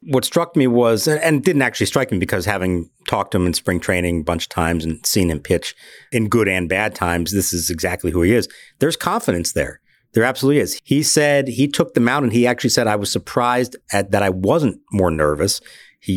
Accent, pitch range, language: American, 90-135 Hz, English